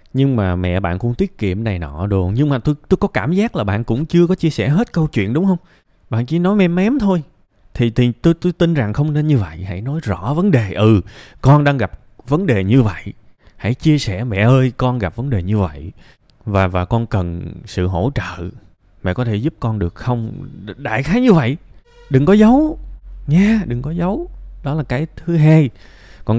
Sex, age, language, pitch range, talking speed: male, 20-39, Vietnamese, 100-145 Hz, 230 wpm